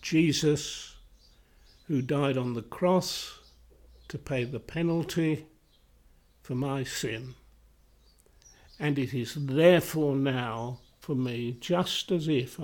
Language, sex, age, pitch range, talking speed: English, male, 60-79, 125-160 Hz, 110 wpm